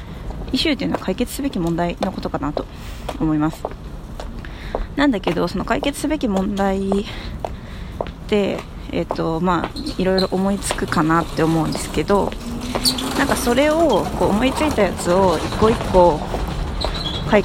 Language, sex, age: Japanese, female, 20-39